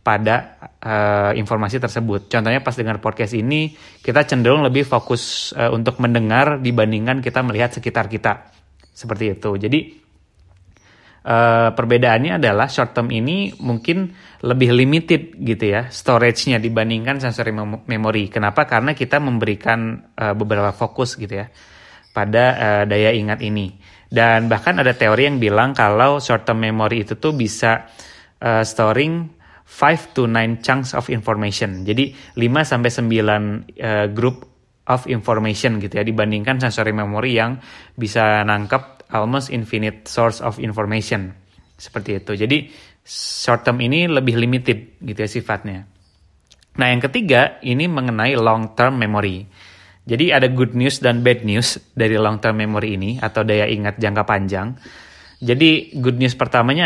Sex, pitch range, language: male, 105-125 Hz, Indonesian